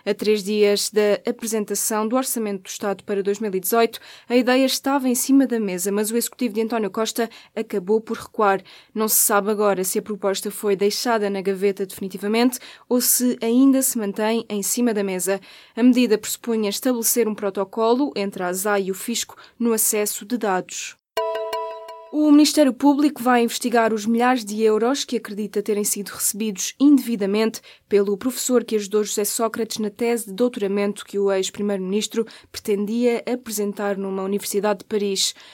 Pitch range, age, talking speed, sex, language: 200-235 Hz, 20-39, 165 wpm, female, Portuguese